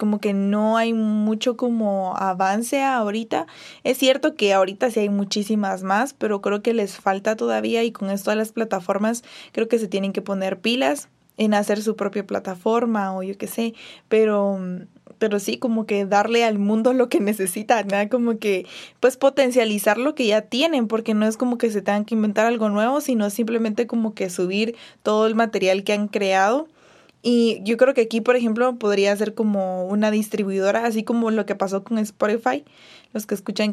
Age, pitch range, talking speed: 20-39, 200-230 Hz, 190 wpm